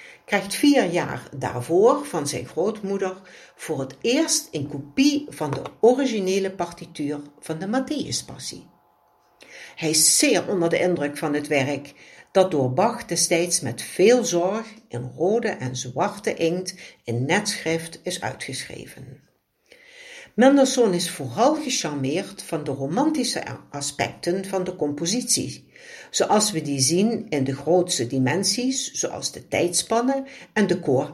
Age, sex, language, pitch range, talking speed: 60-79, female, Dutch, 150-250 Hz, 135 wpm